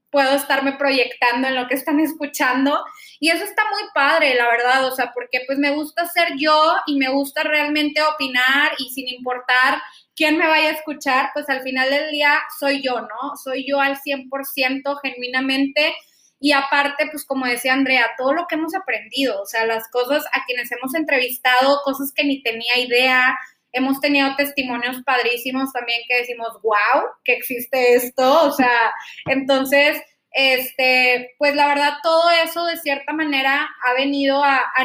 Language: Spanish